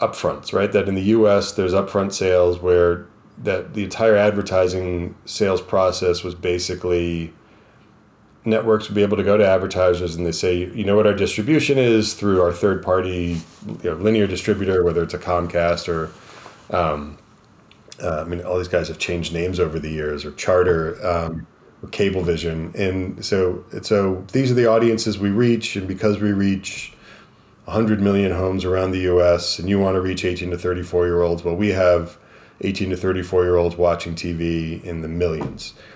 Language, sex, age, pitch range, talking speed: English, male, 30-49, 85-100 Hz, 175 wpm